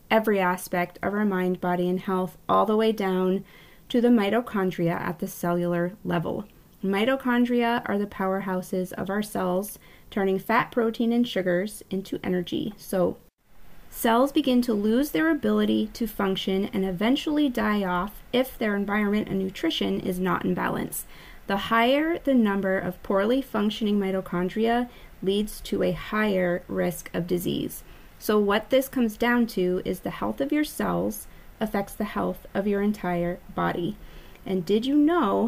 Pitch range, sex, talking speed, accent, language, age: 185-240 Hz, female, 155 wpm, American, English, 20-39